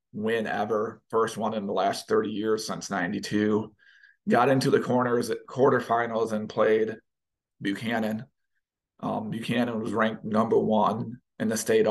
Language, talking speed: English, 145 wpm